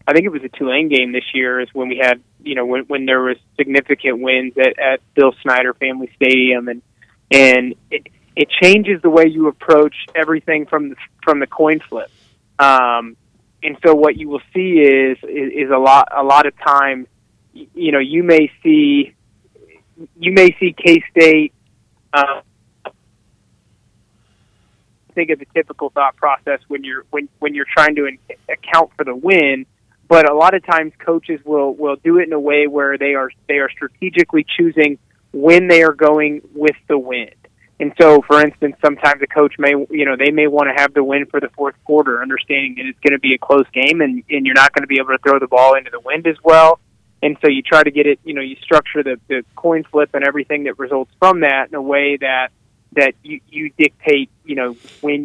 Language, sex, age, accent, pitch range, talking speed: English, male, 20-39, American, 130-155 Hz, 210 wpm